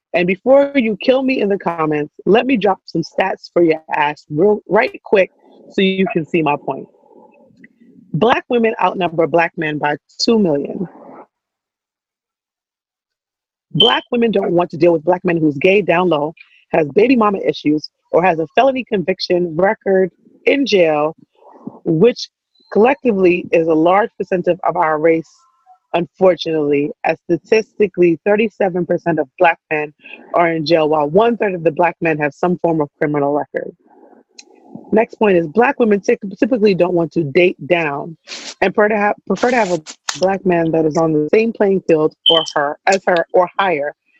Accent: American